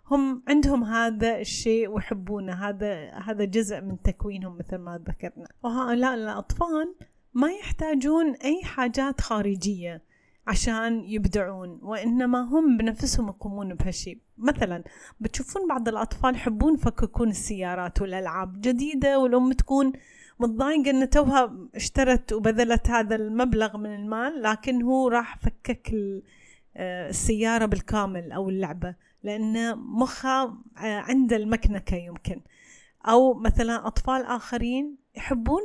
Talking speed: 110 wpm